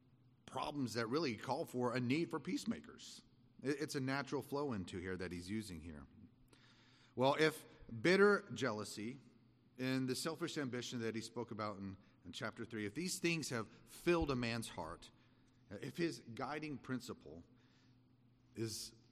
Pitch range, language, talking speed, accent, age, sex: 115-130 Hz, English, 150 wpm, American, 40-59, male